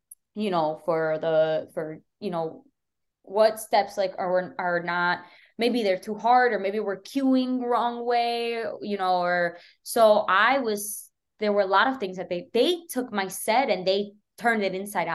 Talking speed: 180 wpm